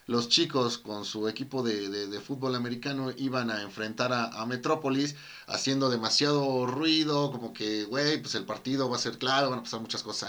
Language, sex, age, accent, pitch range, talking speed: Spanish, male, 40-59, Mexican, 115-145 Hz, 200 wpm